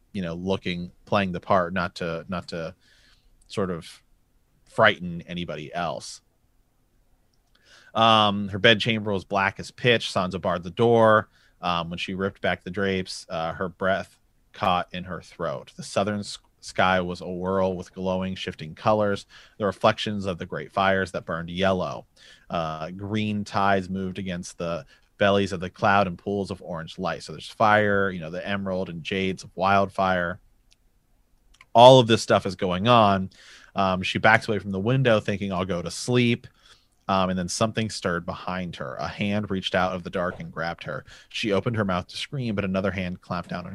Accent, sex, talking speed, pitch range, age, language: American, male, 180 wpm, 90-105 Hz, 30-49, English